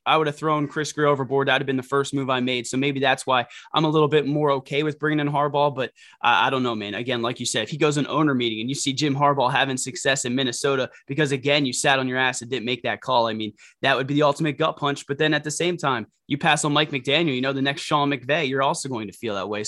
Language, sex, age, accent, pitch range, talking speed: English, male, 20-39, American, 130-150 Hz, 300 wpm